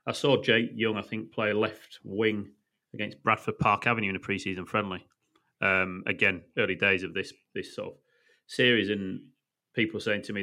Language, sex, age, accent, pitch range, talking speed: English, male, 30-49, British, 105-130 Hz, 190 wpm